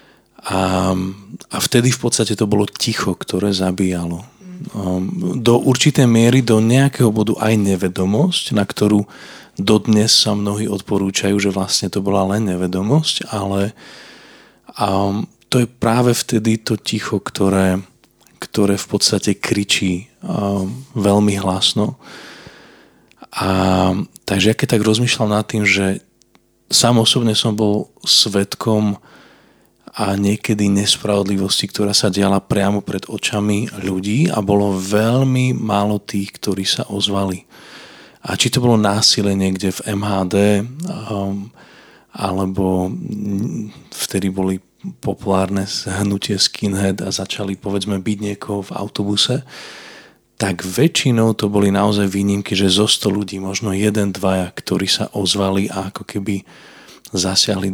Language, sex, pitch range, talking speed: Slovak, male, 95-110 Hz, 120 wpm